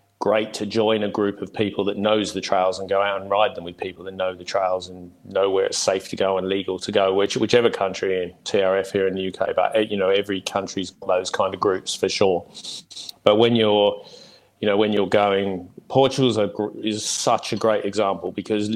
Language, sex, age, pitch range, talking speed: English, male, 30-49, 95-110 Hz, 220 wpm